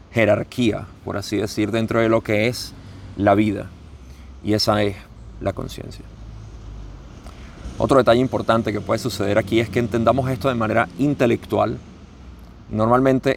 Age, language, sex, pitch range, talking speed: 30-49, Spanish, male, 95-120 Hz, 140 wpm